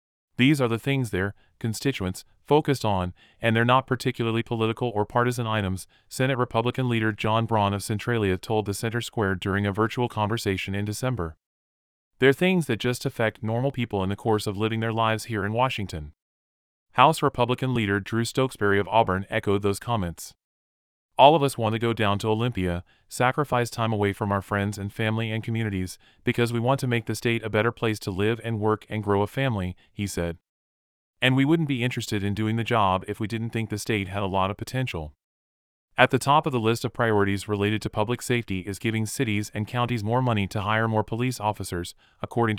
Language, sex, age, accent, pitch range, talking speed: English, male, 30-49, American, 100-120 Hz, 205 wpm